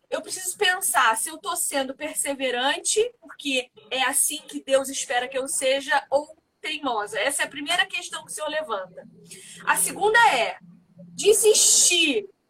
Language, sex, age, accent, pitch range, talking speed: Portuguese, female, 20-39, Brazilian, 270-370 Hz, 155 wpm